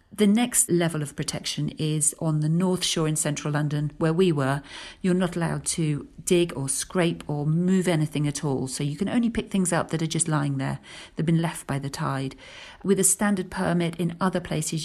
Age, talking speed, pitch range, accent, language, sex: 40-59, 215 wpm, 150-185 Hz, British, English, female